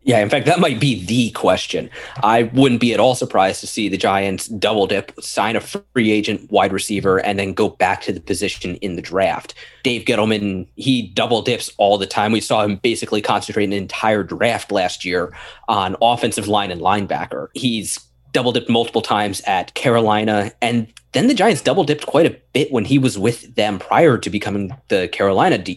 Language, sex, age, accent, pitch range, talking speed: English, male, 30-49, American, 100-120 Hz, 200 wpm